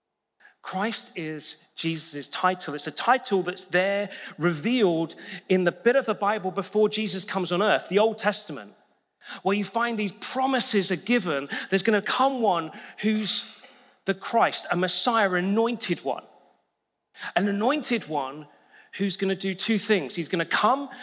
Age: 30-49